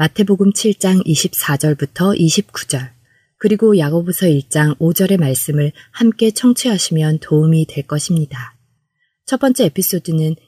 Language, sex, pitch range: Korean, female, 145-190 Hz